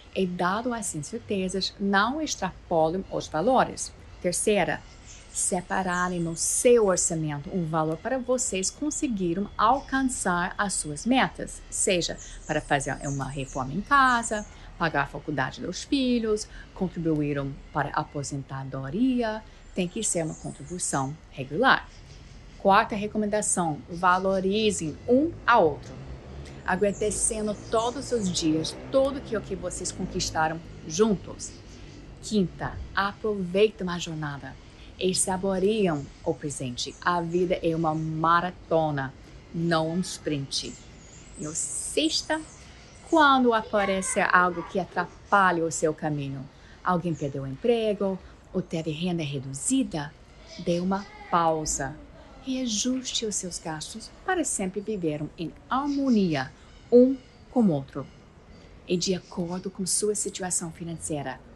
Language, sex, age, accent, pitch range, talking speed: Portuguese, female, 30-49, Brazilian, 155-210 Hz, 115 wpm